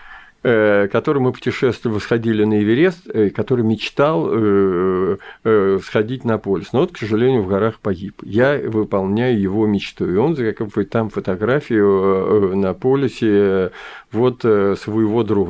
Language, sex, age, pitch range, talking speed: Russian, male, 50-69, 100-115 Hz, 130 wpm